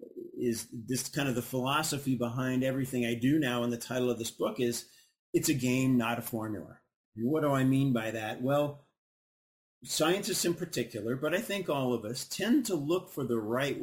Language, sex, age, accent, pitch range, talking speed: English, male, 40-59, American, 120-145 Hz, 200 wpm